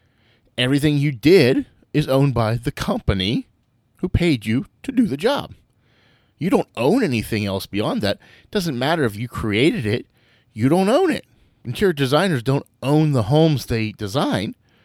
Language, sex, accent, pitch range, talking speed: English, male, American, 105-135 Hz, 165 wpm